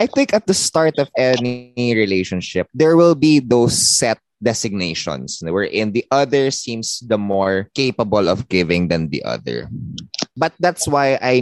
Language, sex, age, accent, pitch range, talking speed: English, male, 20-39, Filipino, 95-140 Hz, 160 wpm